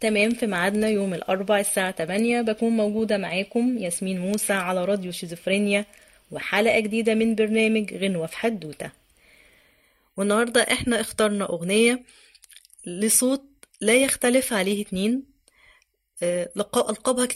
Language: Arabic